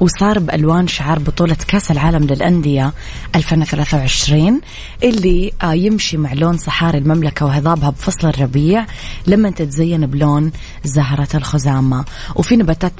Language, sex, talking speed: English, female, 110 wpm